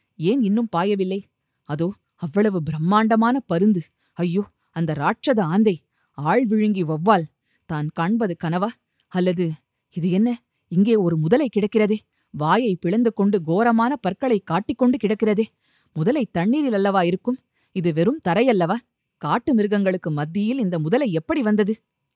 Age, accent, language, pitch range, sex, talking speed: 20-39, native, Tamil, 185-245 Hz, female, 120 wpm